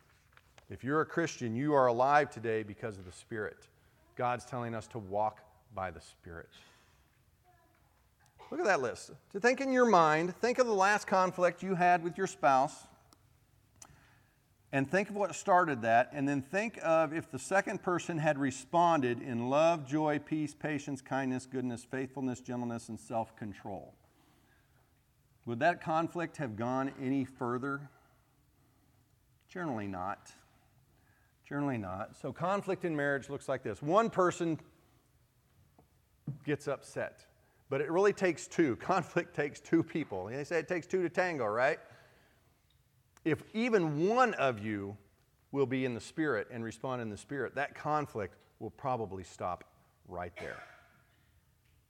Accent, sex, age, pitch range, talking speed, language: American, male, 40-59, 115-170 Hz, 150 wpm, English